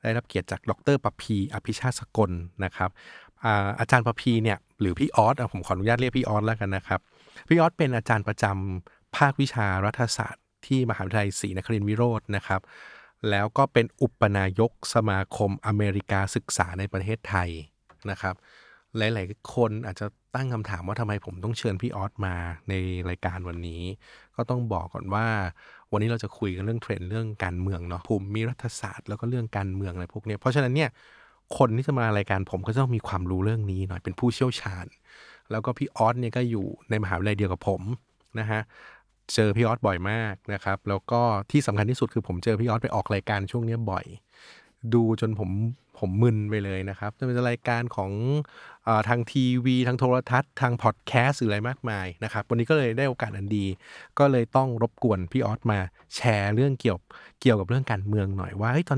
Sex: male